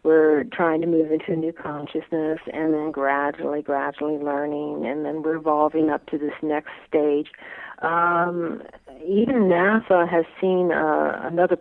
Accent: American